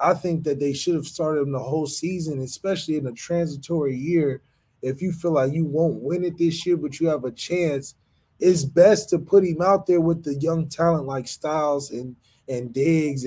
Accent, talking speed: American, 215 wpm